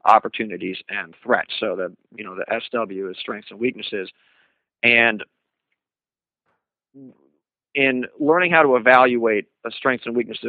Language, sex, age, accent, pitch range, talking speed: English, male, 40-59, American, 105-125 Hz, 130 wpm